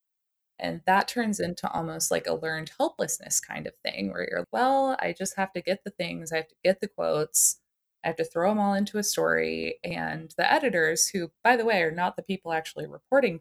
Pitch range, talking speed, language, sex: 165-240 Hz, 225 wpm, English, female